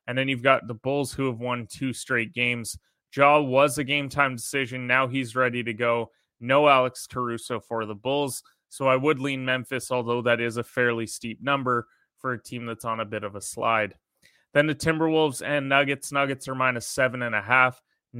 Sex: male